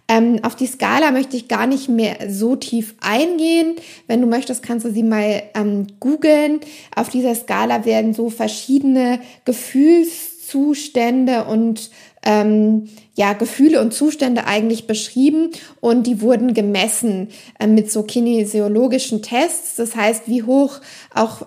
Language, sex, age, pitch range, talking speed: German, female, 20-39, 220-255 Hz, 135 wpm